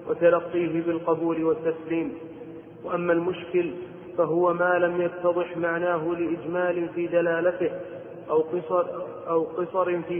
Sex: male